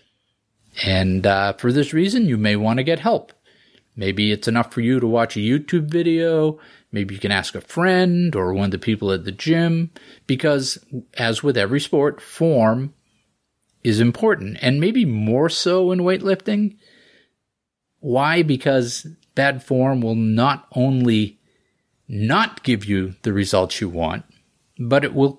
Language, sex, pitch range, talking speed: English, male, 110-160 Hz, 155 wpm